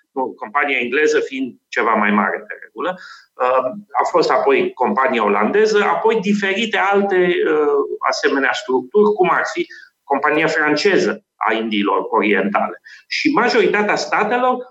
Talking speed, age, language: 120 wpm, 30-49, Romanian